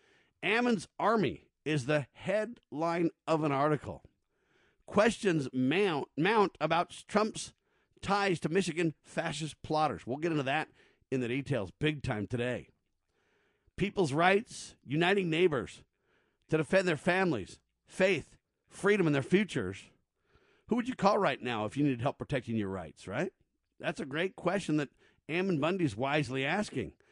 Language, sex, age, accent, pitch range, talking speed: English, male, 50-69, American, 135-170 Hz, 145 wpm